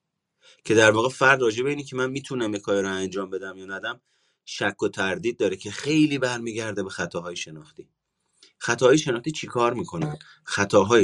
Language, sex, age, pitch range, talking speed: Persian, male, 30-49, 120-175 Hz, 175 wpm